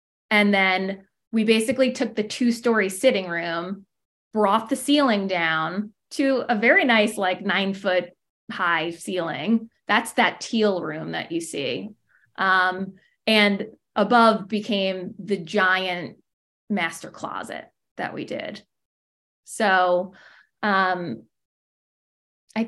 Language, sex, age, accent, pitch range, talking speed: English, female, 20-39, American, 185-230 Hz, 115 wpm